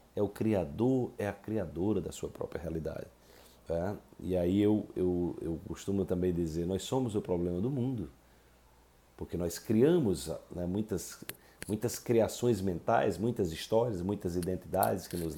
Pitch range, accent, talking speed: 85-100 Hz, Brazilian, 150 wpm